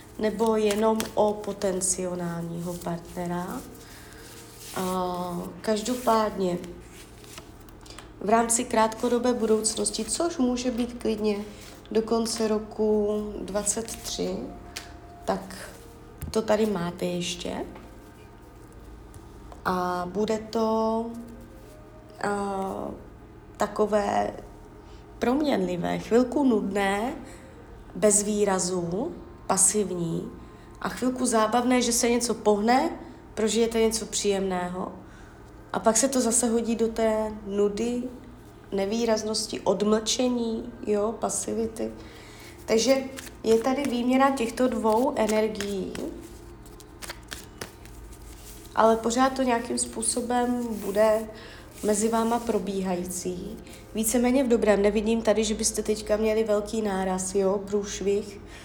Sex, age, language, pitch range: female, 20-39, Czech, 185-230 Hz